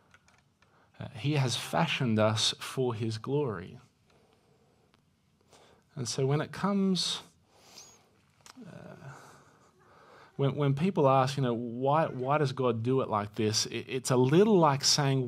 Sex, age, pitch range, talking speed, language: male, 30-49, 120-155 Hz, 135 wpm, English